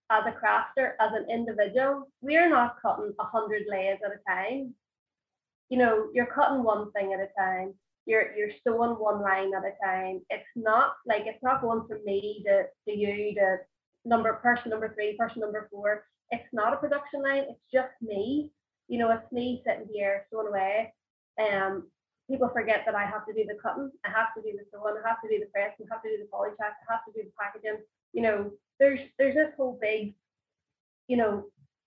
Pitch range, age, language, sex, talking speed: 205-235 Hz, 20-39, English, female, 210 wpm